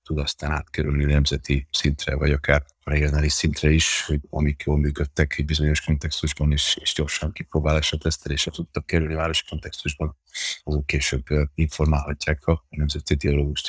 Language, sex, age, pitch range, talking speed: Hungarian, male, 30-49, 75-80 Hz, 145 wpm